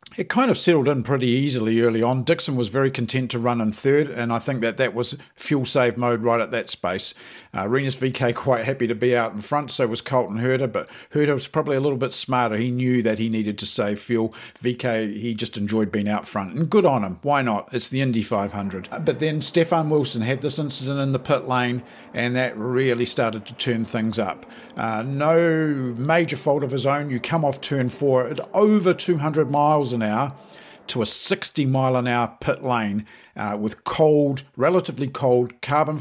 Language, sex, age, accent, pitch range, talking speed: English, male, 50-69, Australian, 115-140 Hz, 215 wpm